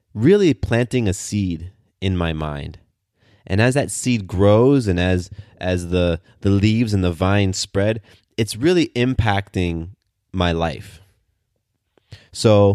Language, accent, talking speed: English, American, 130 wpm